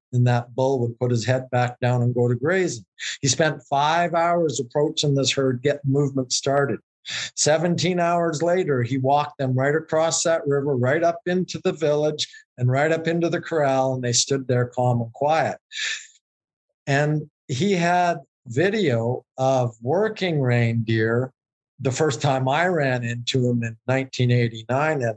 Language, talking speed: English, 160 wpm